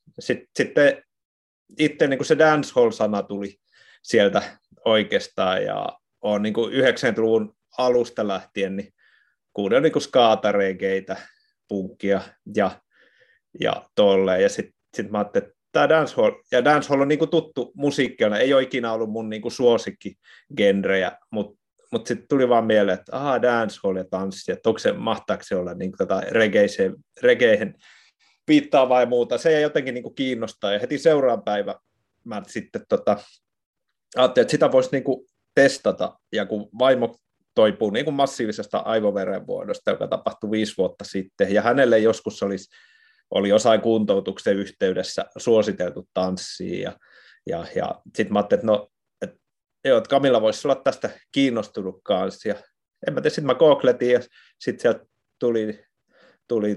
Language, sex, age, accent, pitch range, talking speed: Finnish, male, 30-49, native, 105-140 Hz, 125 wpm